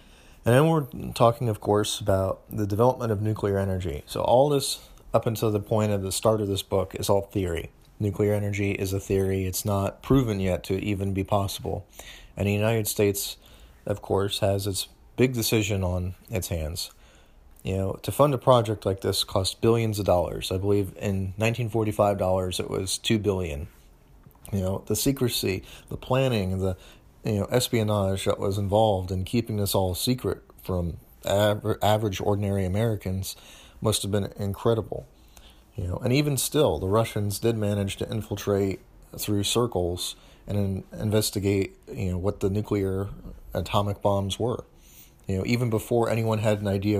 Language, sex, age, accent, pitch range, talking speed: English, male, 30-49, American, 95-110 Hz, 170 wpm